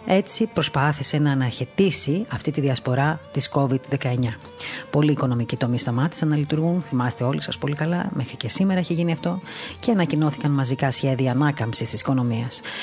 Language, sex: Greek, female